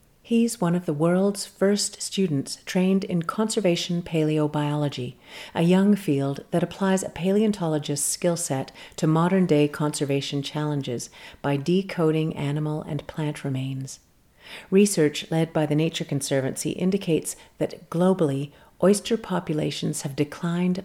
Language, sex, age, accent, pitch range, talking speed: English, female, 50-69, American, 145-180 Hz, 125 wpm